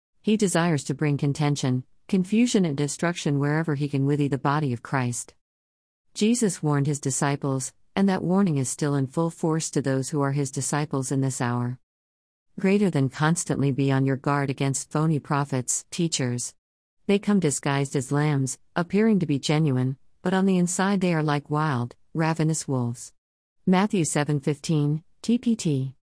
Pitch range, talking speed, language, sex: 135-165 Hz, 165 wpm, English, female